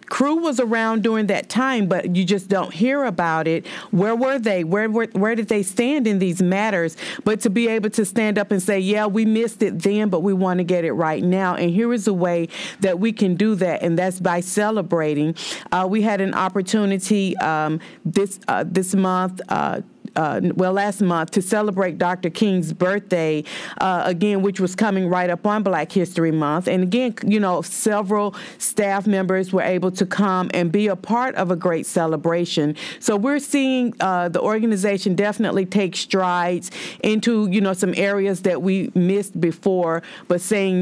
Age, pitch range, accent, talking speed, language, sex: 40-59, 180-210 Hz, American, 195 wpm, English, female